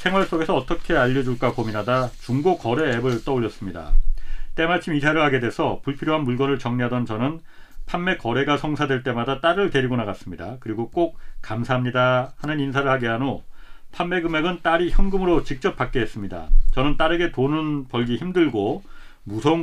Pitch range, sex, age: 120-160 Hz, male, 40-59